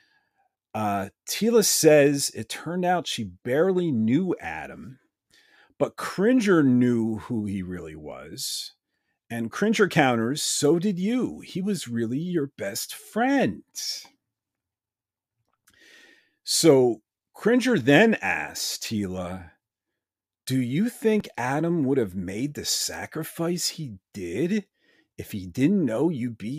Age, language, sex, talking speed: 40-59, English, male, 115 wpm